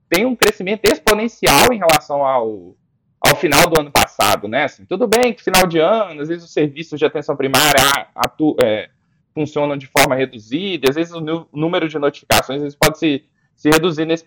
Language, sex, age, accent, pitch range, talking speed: Portuguese, male, 20-39, Brazilian, 140-185 Hz, 195 wpm